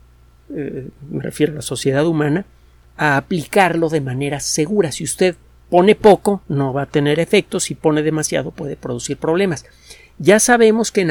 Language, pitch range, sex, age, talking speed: Spanish, 130-175 Hz, male, 50-69, 165 wpm